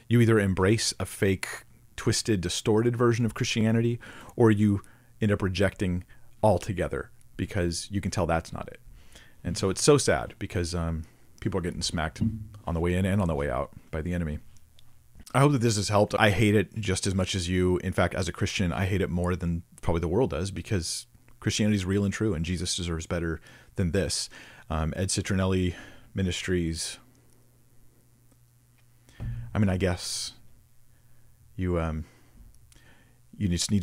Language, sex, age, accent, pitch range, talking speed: English, male, 40-59, American, 90-115 Hz, 175 wpm